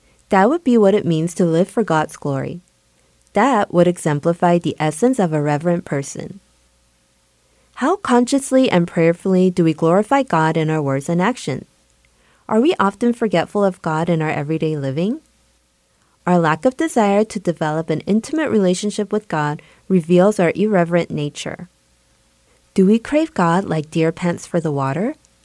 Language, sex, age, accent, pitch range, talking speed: English, female, 30-49, American, 155-210 Hz, 160 wpm